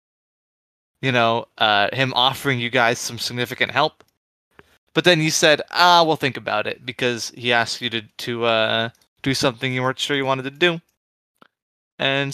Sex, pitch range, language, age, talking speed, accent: male, 115-145 Hz, English, 20-39, 175 wpm, American